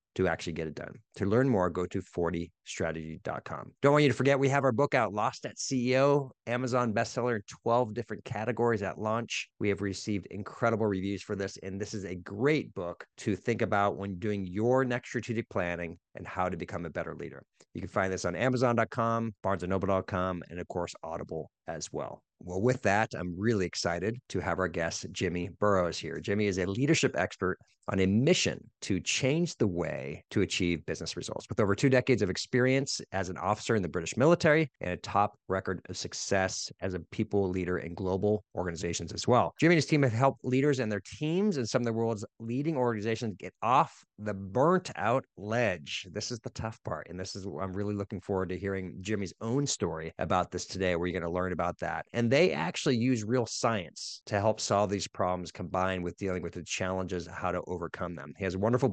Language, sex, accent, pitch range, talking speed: English, male, American, 90-125 Hz, 210 wpm